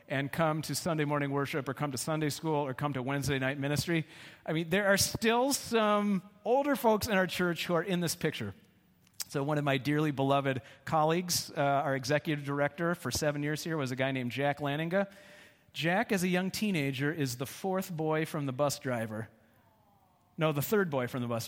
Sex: male